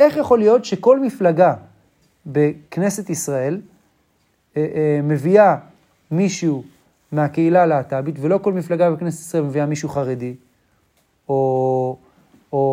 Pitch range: 145-200 Hz